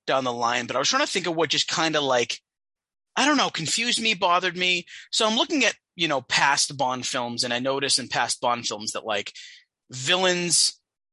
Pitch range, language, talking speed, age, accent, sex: 120-185 Hz, English, 220 wpm, 30-49, American, male